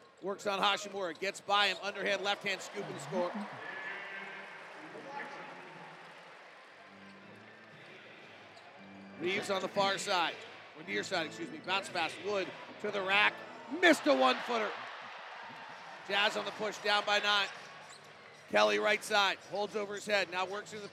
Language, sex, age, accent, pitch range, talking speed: English, male, 40-59, American, 195-230 Hz, 145 wpm